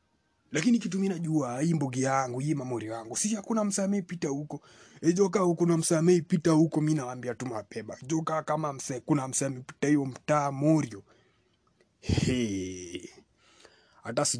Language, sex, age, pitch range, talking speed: Swahili, male, 30-49, 115-160 Hz, 110 wpm